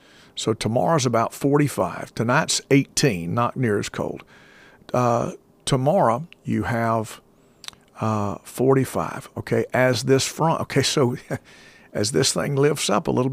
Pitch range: 110-145 Hz